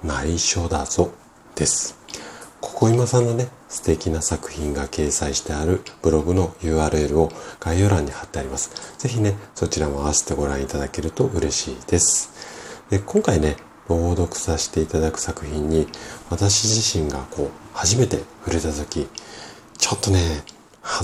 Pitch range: 75-100 Hz